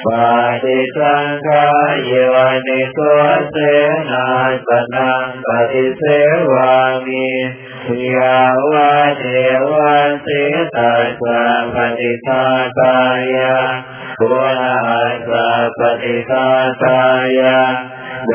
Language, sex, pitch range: Thai, male, 130-140 Hz